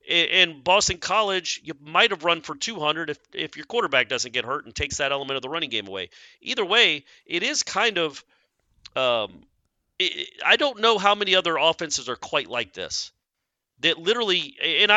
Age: 40-59